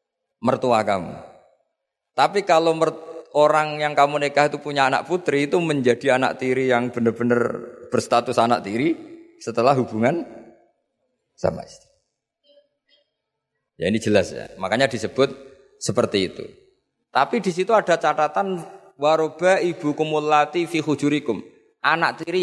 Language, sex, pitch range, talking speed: Malay, male, 130-175 Hz, 120 wpm